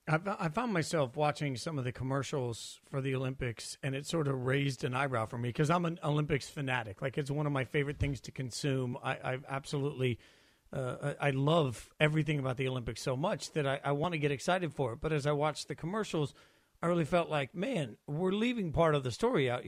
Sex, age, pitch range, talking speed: male, 40-59, 130-155 Hz, 220 wpm